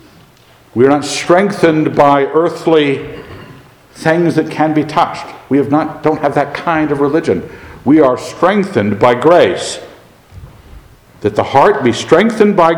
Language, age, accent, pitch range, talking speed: English, 60-79, American, 120-155 Hz, 145 wpm